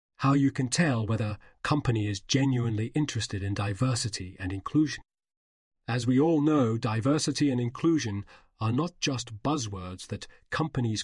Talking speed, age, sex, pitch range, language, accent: 140 wpm, 40-59, male, 110-140 Hz, English, British